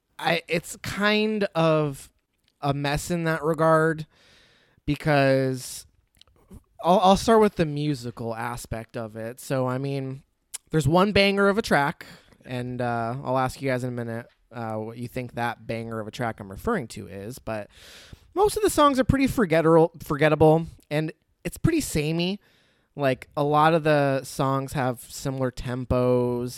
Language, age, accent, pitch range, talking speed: English, 20-39, American, 120-180 Hz, 160 wpm